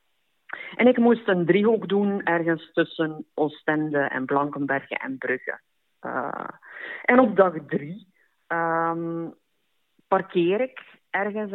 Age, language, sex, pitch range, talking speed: 50-69, Dutch, female, 150-195 Hz, 115 wpm